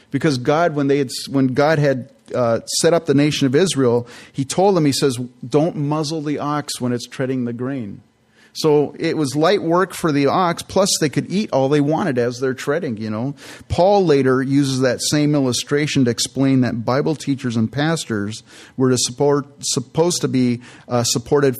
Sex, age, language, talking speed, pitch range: male, 40-59, English, 195 wpm, 120-145 Hz